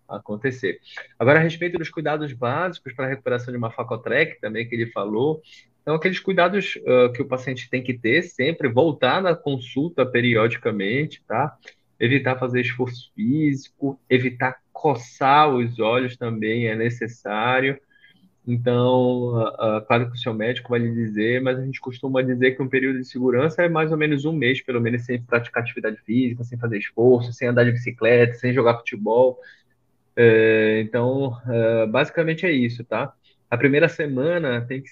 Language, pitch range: Portuguese, 120-140 Hz